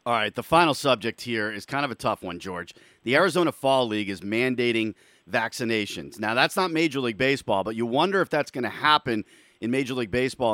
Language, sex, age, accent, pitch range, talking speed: English, male, 40-59, American, 115-150 Hz, 215 wpm